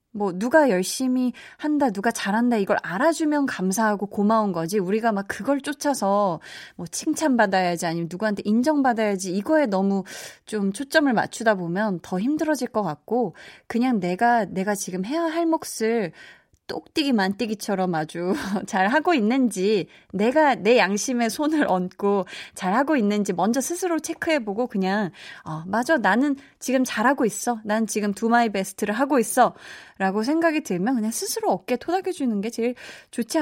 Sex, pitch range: female, 190-265 Hz